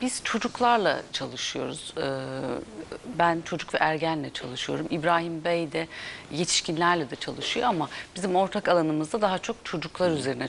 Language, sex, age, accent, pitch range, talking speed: Turkish, female, 40-59, native, 175-240 Hz, 125 wpm